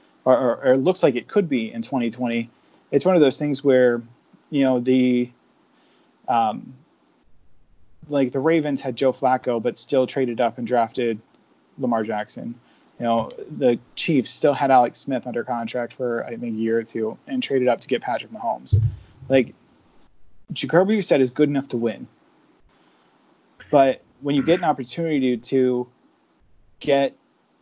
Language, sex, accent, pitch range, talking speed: English, male, American, 120-145 Hz, 165 wpm